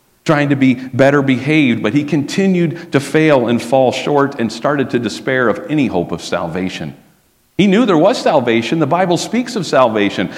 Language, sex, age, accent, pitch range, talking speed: English, male, 50-69, American, 95-150 Hz, 185 wpm